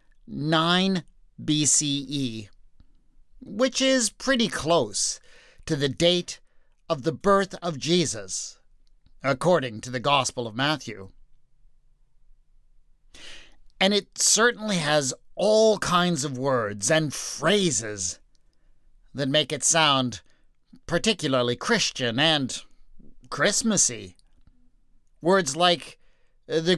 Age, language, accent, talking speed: 50-69, English, American, 90 wpm